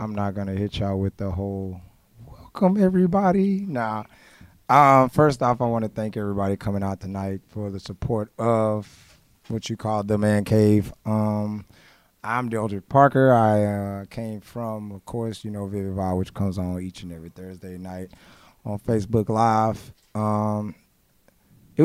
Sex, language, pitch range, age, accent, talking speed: male, English, 100-120 Hz, 20-39, American, 160 wpm